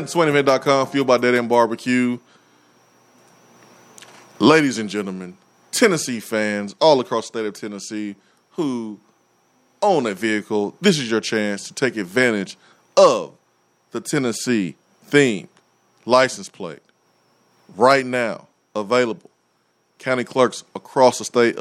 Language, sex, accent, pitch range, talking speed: English, male, American, 100-125 Hz, 115 wpm